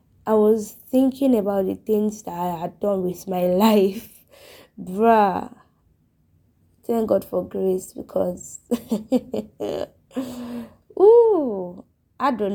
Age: 20-39